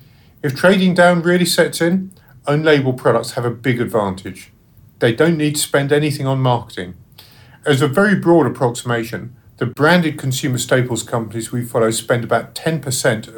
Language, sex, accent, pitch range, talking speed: English, male, British, 115-150 Hz, 155 wpm